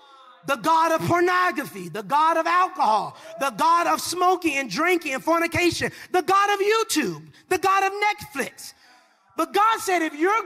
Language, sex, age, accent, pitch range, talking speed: English, male, 30-49, American, 310-370 Hz, 165 wpm